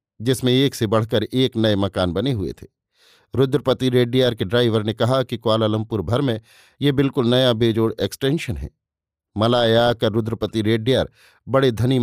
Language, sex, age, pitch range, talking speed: Hindi, male, 50-69, 110-130 Hz, 160 wpm